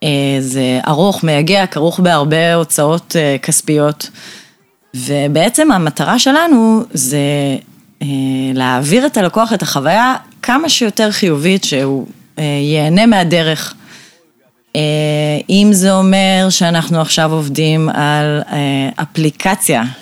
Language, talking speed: Hebrew, 90 wpm